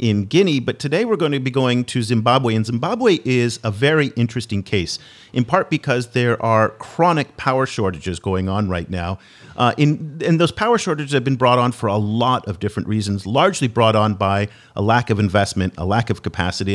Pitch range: 105-135 Hz